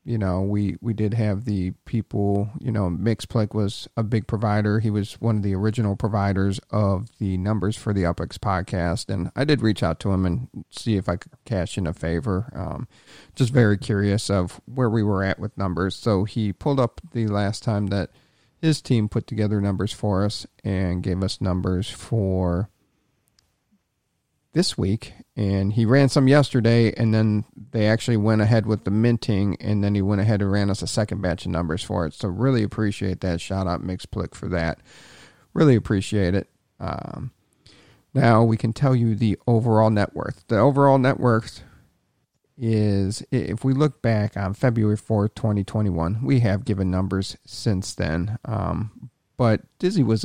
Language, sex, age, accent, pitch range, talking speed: English, male, 40-59, American, 95-115 Hz, 180 wpm